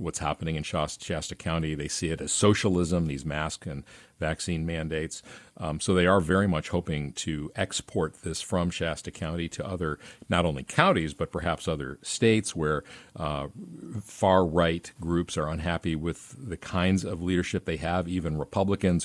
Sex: male